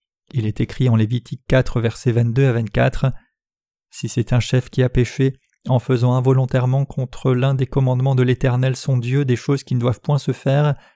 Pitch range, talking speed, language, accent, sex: 120-140 Hz, 195 wpm, French, French, male